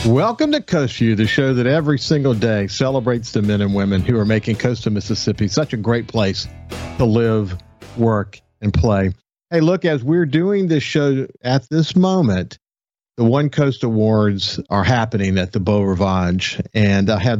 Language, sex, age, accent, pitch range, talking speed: English, male, 50-69, American, 105-125 Hz, 175 wpm